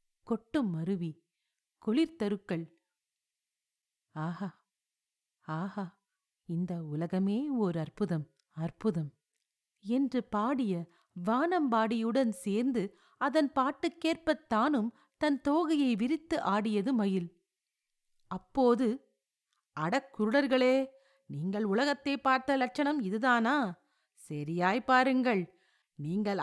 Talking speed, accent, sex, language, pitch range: 65 wpm, native, female, Tamil, 195-275 Hz